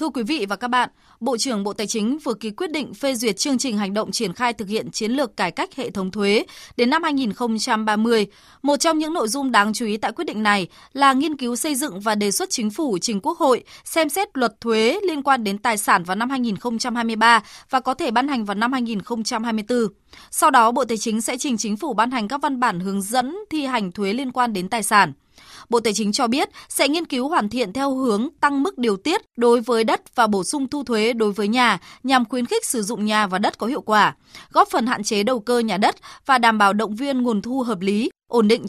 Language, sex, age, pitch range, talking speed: Vietnamese, female, 20-39, 215-270 Hz, 250 wpm